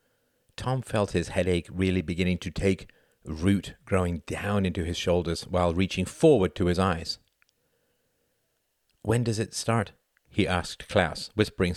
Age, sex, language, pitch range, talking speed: 50-69, male, English, 85-105 Hz, 145 wpm